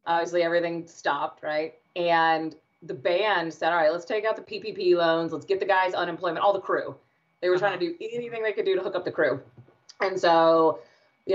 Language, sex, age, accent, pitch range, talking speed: English, female, 30-49, American, 160-200 Hz, 215 wpm